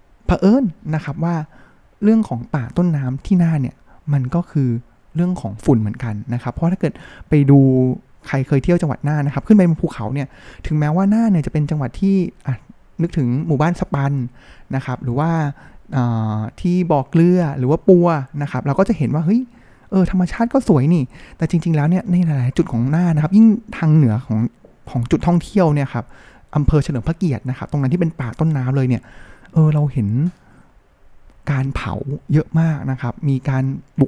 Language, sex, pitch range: Thai, male, 125-165 Hz